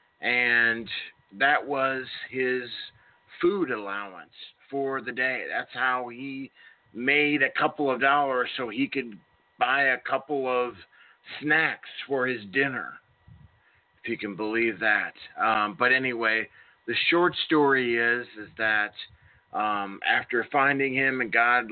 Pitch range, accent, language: 115-135 Hz, American, English